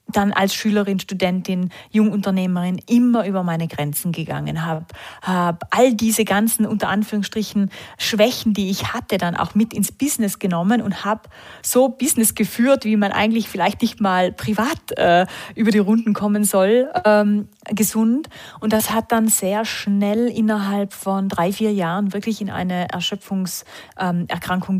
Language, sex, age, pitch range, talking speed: German, female, 30-49, 185-220 Hz, 150 wpm